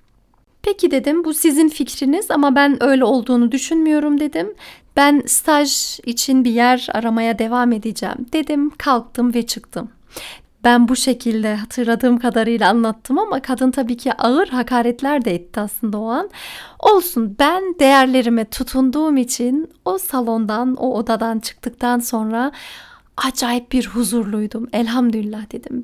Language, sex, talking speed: Turkish, female, 130 wpm